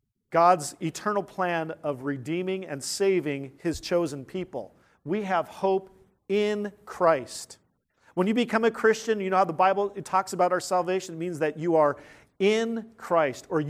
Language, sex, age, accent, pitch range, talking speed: English, male, 40-59, American, 155-205 Hz, 165 wpm